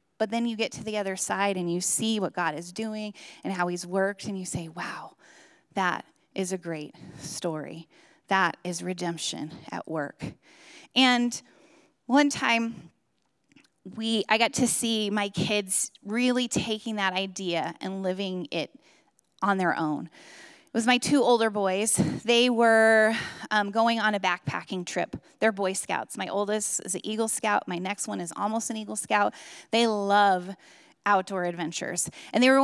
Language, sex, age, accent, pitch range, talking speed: English, female, 20-39, American, 185-240 Hz, 165 wpm